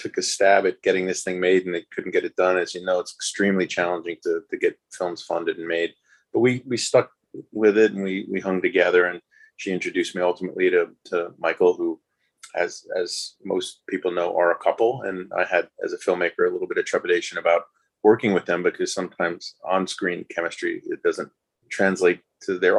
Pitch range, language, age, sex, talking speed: 310-440 Hz, English, 30-49, male, 205 wpm